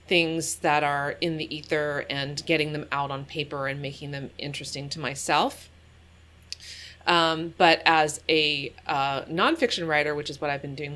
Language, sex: English, female